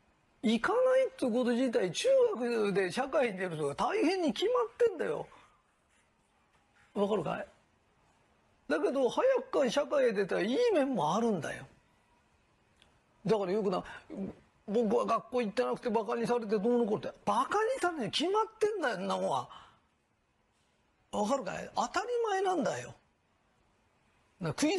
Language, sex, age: Japanese, male, 40-59